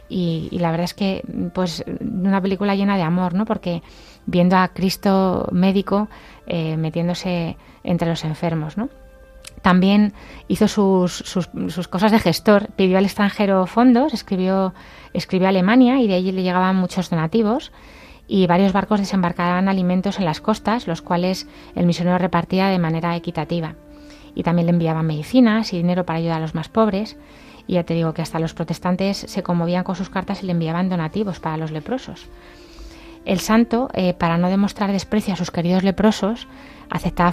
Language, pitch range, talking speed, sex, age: Spanish, 170-195 Hz, 170 wpm, female, 20-39